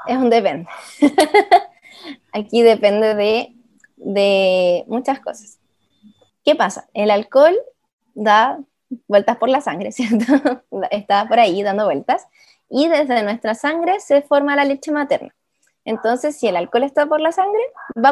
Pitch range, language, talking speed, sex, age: 220-295 Hz, Romanian, 140 wpm, female, 20-39